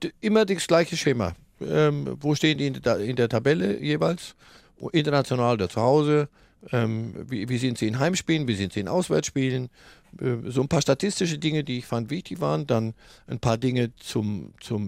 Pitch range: 110-150 Hz